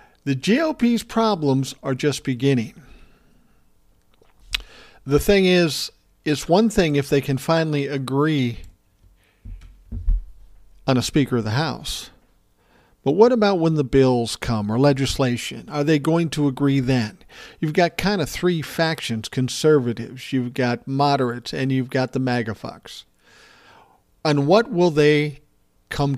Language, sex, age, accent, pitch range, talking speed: English, male, 50-69, American, 120-155 Hz, 135 wpm